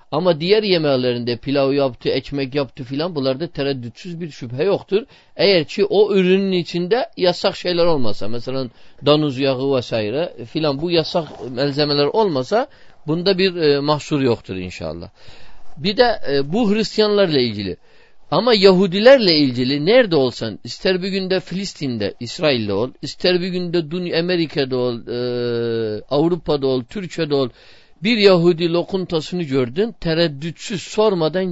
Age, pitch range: 50-69, 130-180 Hz